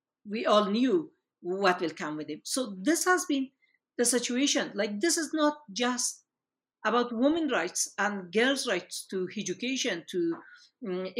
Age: 50-69